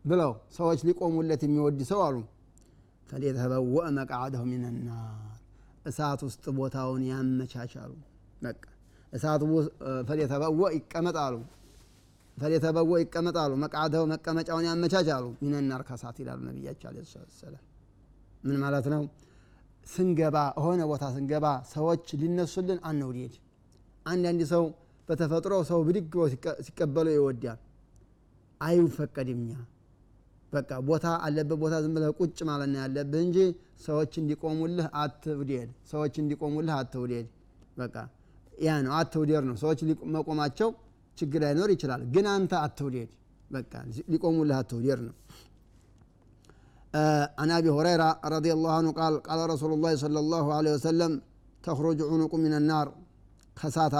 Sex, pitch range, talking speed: male, 130-160 Hz, 90 wpm